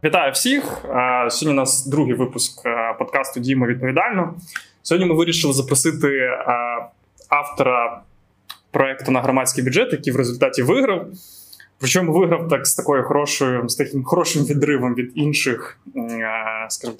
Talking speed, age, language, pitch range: 125 wpm, 20-39, Ukrainian, 130-175 Hz